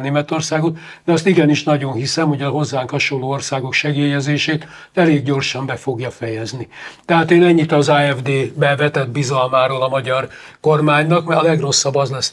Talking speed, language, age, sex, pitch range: 155 wpm, Hungarian, 60-79, male, 145-170 Hz